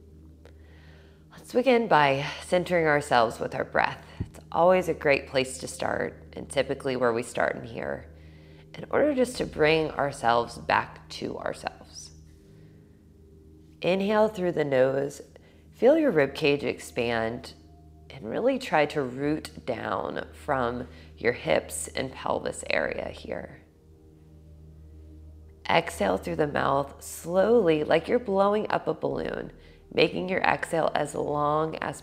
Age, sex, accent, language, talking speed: 20-39, female, American, English, 135 wpm